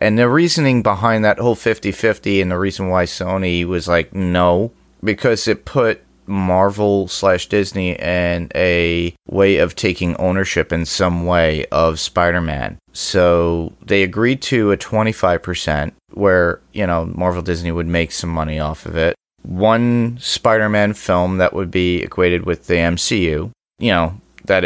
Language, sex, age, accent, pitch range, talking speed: English, male, 30-49, American, 85-100 Hz, 155 wpm